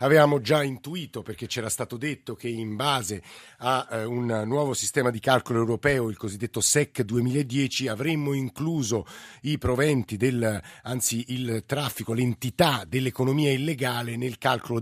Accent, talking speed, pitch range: native, 140 wpm, 115-140 Hz